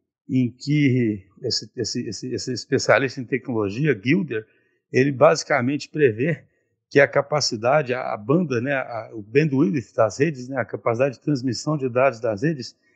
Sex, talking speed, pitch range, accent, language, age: male, 155 wpm, 125-155 Hz, Brazilian, Portuguese, 60-79